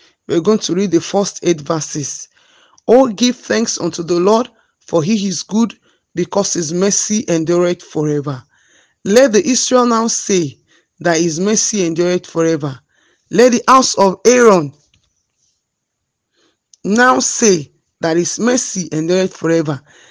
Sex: male